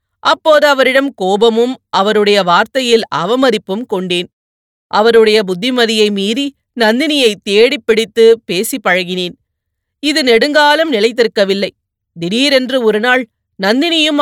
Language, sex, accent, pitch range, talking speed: Tamil, female, native, 200-260 Hz, 90 wpm